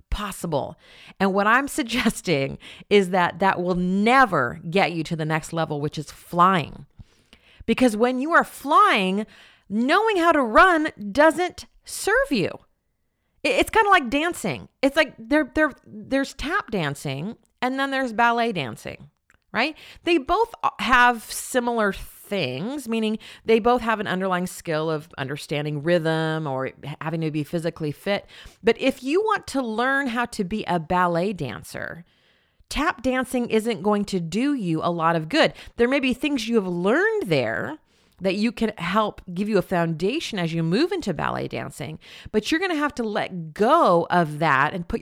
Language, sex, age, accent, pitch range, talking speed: English, female, 40-59, American, 165-250 Hz, 165 wpm